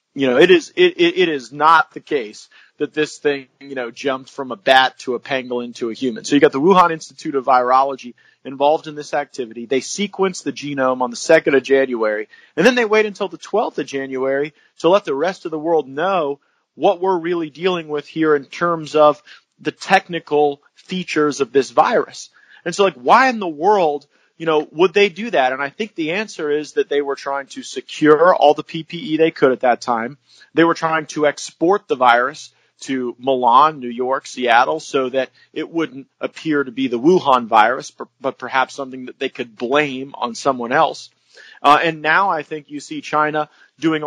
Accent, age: American, 30-49